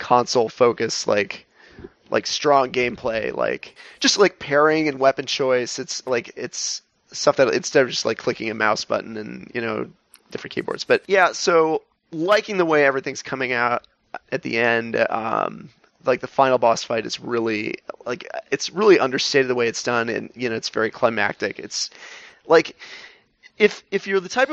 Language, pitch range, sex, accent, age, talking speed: English, 130-165 Hz, male, American, 30-49, 175 wpm